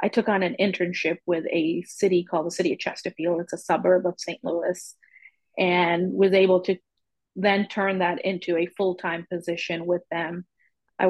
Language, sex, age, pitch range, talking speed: English, female, 30-49, 170-195 Hz, 180 wpm